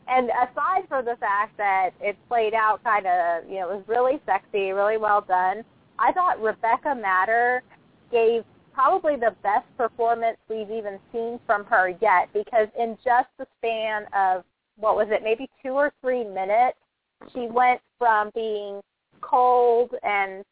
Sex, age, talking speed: female, 30-49, 160 wpm